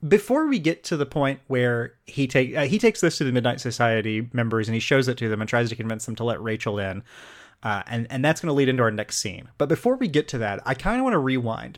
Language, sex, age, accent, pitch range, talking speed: English, male, 30-49, American, 115-155 Hz, 285 wpm